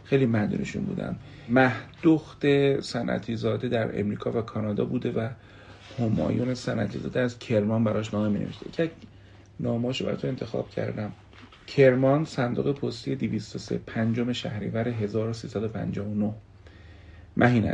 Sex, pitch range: male, 100-120 Hz